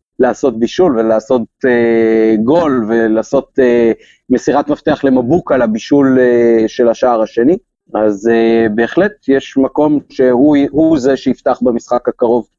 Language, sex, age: Hebrew, male, 40-59